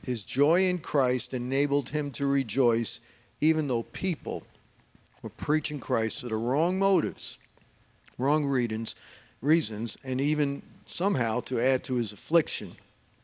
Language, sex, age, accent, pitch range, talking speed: English, male, 50-69, American, 115-140 Hz, 125 wpm